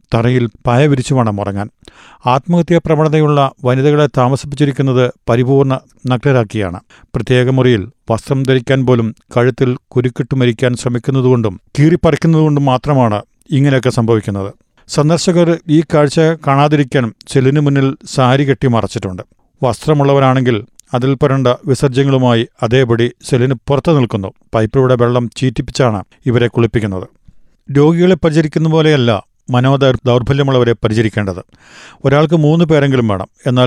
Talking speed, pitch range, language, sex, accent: 95 wpm, 120-145 Hz, Malayalam, male, native